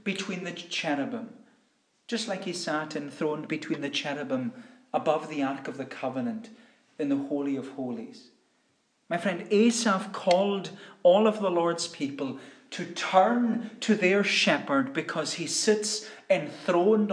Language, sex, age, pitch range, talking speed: English, male, 40-59, 160-215 Hz, 140 wpm